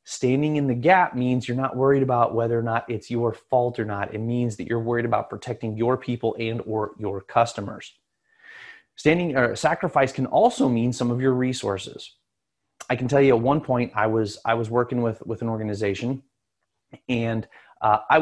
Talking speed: 195 wpm